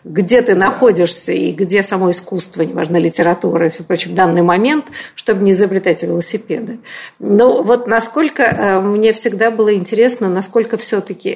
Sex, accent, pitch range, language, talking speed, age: female, native, 180-230 Hz, Russian, 150 wpm, 50-69